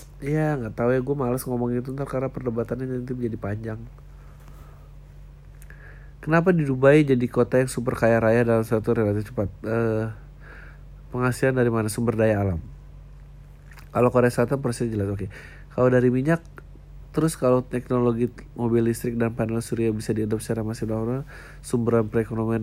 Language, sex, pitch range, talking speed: Indonesian, male, 100-130 Hz, 160 wpm